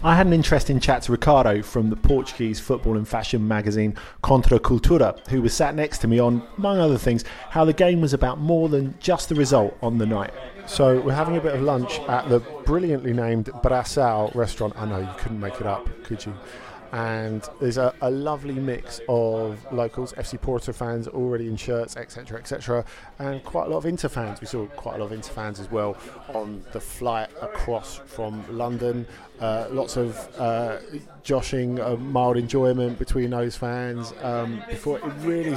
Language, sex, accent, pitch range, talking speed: English, male, British, 115-140 Hz, 195 wpm